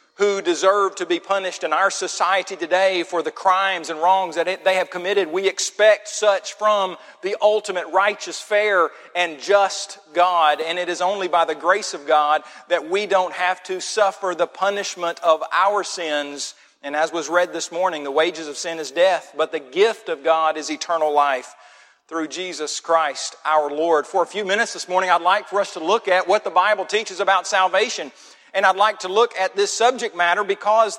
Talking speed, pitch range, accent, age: 200 wpm, 175-210 Hz, American, 40-59